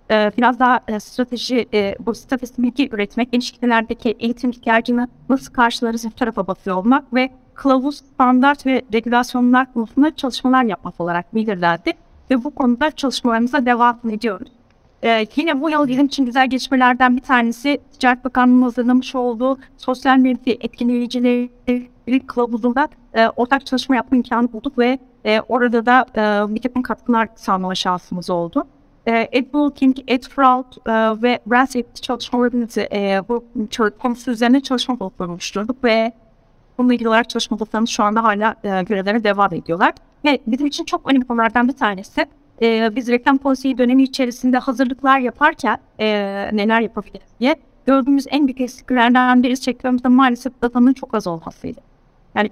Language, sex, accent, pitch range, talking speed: Turkish, female, native, 225-260 Hz, 150 wpm